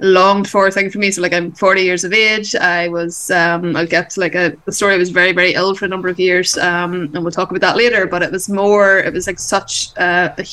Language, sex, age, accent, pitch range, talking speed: English, female, 20-39, Irish, 175-200 Hz, 280 wpm